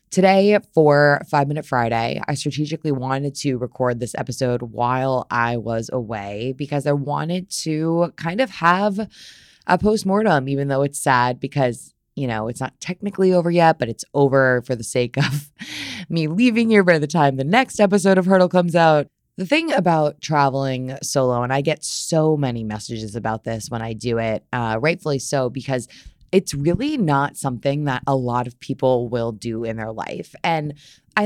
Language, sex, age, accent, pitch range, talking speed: English, female, 20-39, American, 125-165 Hz, 180 wpm